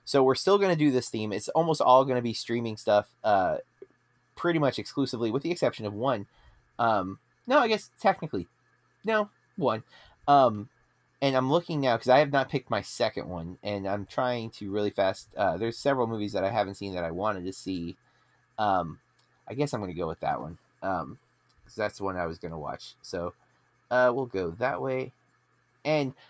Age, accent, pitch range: 30-49, American, 105-150 Hz